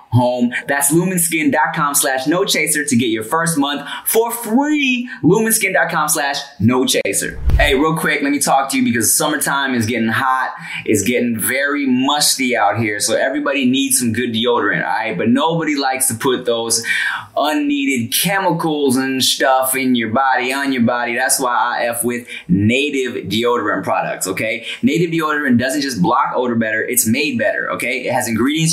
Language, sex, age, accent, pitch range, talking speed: English, male, 20-39, American, 125-195 Hz, 165 wpm